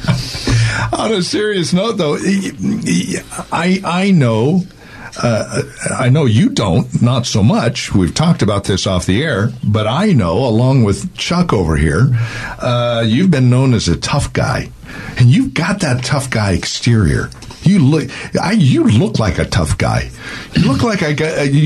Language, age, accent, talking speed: English, 50-69, American, 165 wpm